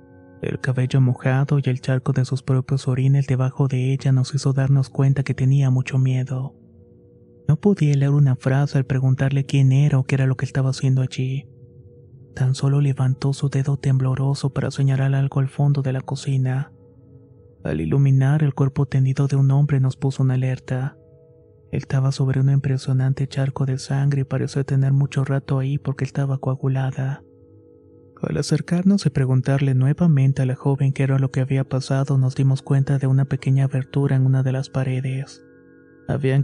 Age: 30-49